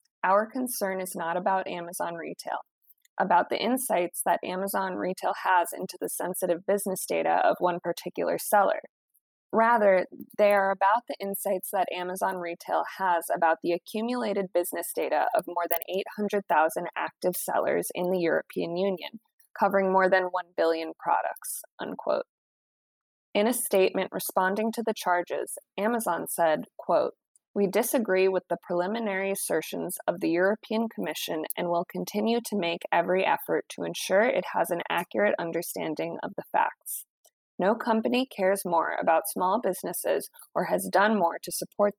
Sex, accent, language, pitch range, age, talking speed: female, American, English, 175-210 Hz, 20-39, 150 wpm